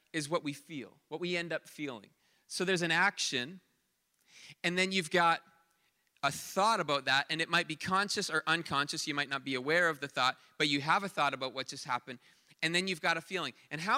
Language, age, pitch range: English, 30-49, 165-220 Hz